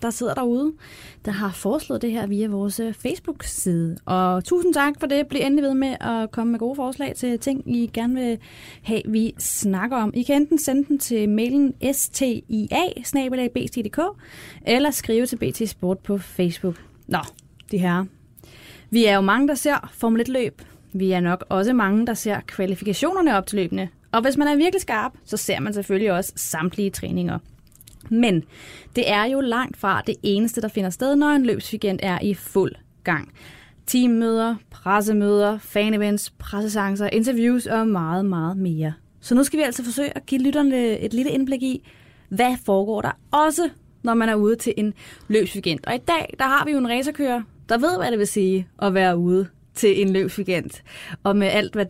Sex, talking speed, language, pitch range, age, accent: female, 185 wpm, Danish, 195-260 Hz, 30-49, native